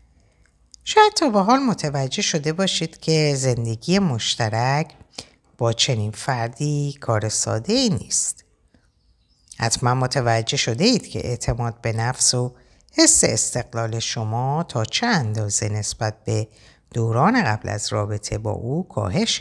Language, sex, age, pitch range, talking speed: Persian, female, 60-79, 115-165 Hz, 125 wpm